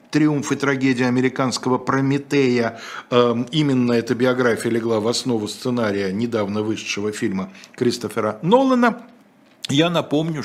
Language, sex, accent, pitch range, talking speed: Russian, male, native, 105-145 Hz, 110 wpm